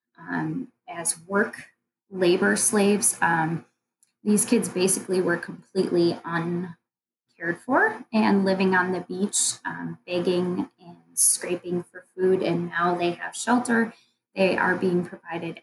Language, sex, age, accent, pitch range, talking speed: English, female, 20-39, American, 170-195 Hz, 125 wpm